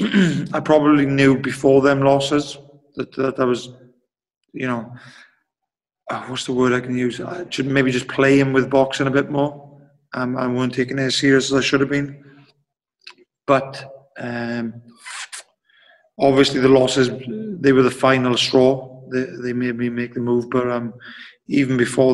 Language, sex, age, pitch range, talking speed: English, male, 30-49, 125-135 Hz, 170 wpm